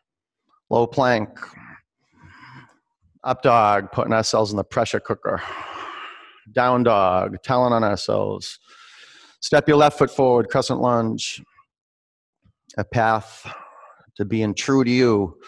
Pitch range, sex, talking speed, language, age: 115-155 Hz, male, 110 wpm, English, 40-59